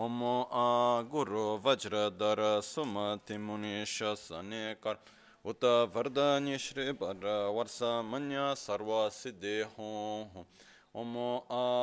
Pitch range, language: 105-140 Hz, Italian